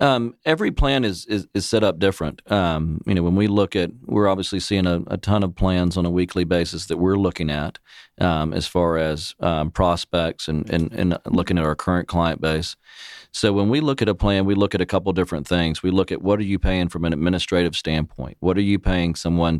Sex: male